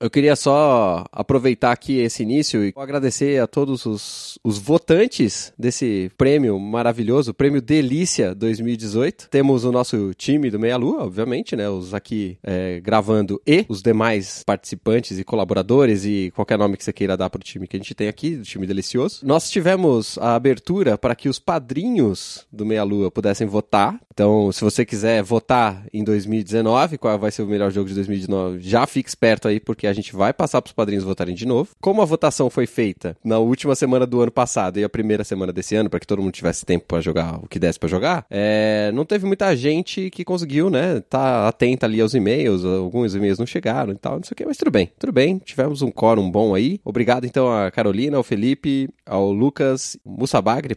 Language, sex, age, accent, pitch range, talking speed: Portuguese, male, 20-39, Brazilian, 100-130 Hz, 205 wpm